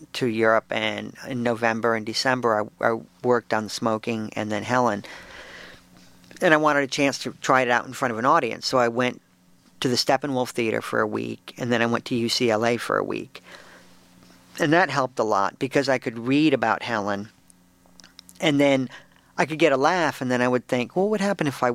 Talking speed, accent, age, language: 210 wpm, American, 50-69, English